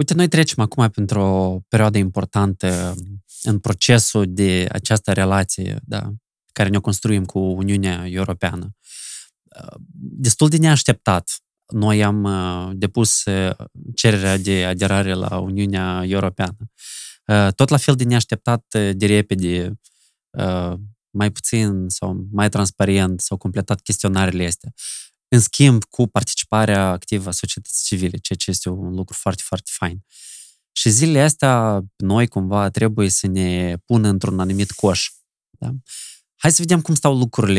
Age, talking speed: 20-39, 135 wpm